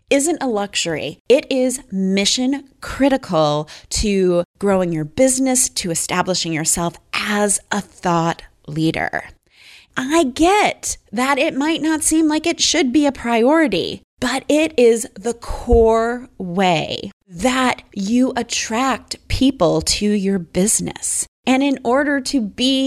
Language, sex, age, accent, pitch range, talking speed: English, female, 30-49, American, 185-260 Hz, 130 wpm